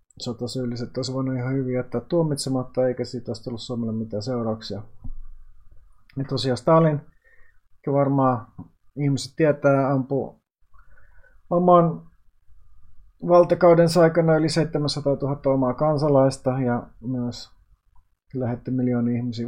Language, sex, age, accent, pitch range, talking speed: Finnish, male, 30-49, native, 115-135 Hz, 100 wpm